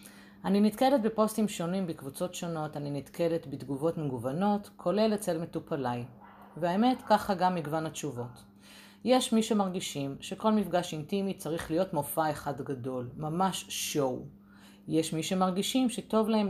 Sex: female